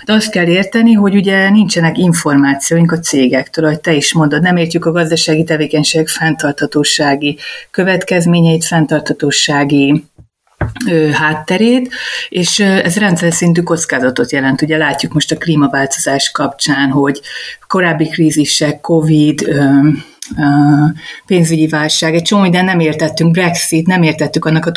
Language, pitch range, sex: Hungarian, 150-180 Hz, female